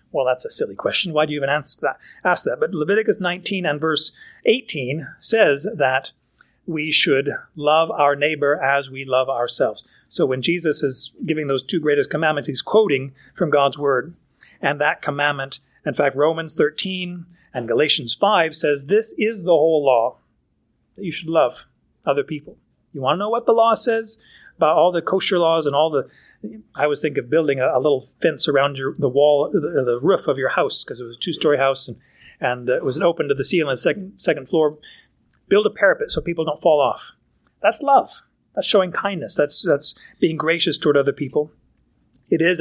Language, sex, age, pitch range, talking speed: English, male, 40-59, 140-180 Hz, 200 wpm